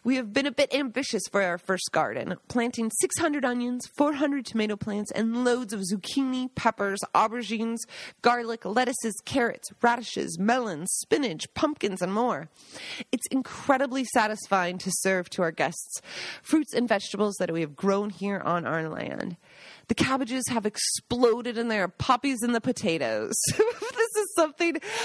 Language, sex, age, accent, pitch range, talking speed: English, female, 30-49, American, 190-250 Hz, 150 wpm